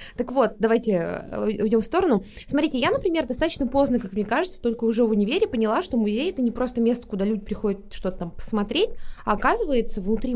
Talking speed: 195 wpm